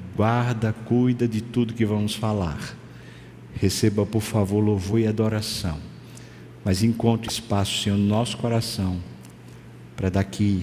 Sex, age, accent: male, 50-69, Brazilian